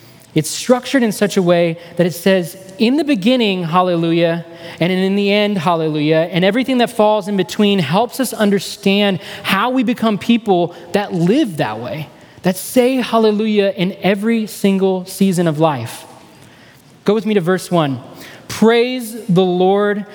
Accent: American